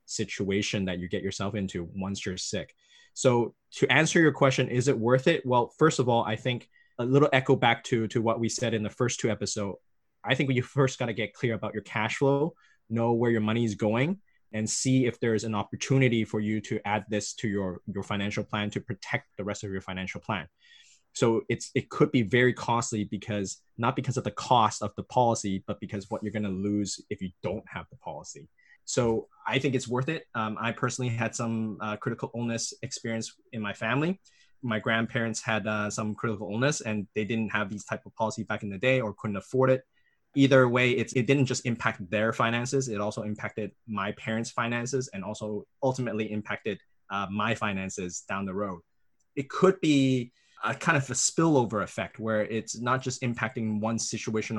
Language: English